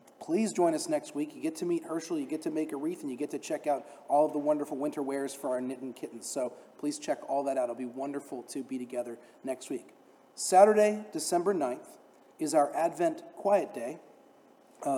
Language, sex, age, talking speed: English, male, 40-59, 220 wpm